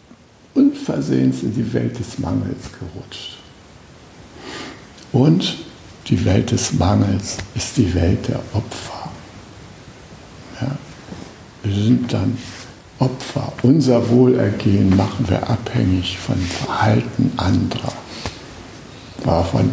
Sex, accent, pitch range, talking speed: male, German, 95-125 Hz, 90 wpm